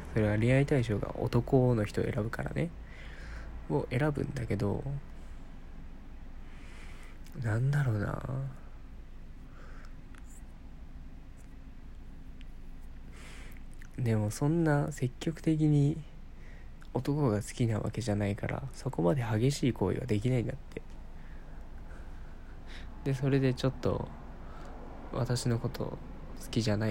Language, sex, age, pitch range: Japanese, male, 20-39, 75-130 Hz